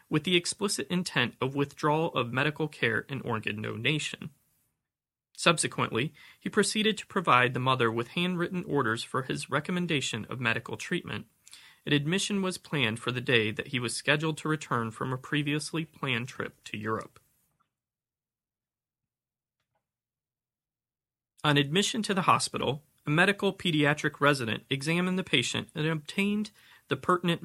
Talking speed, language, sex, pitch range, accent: 140 wpm, English, male, 125-170 Hz, American